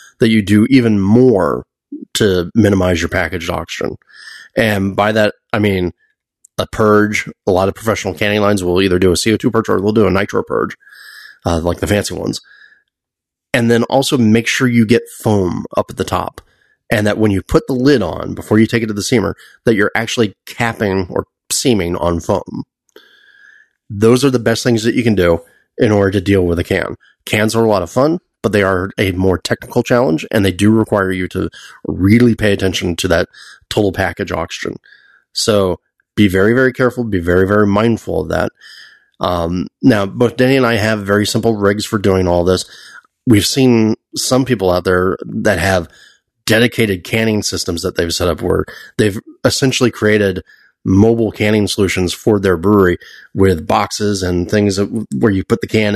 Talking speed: 190 wpm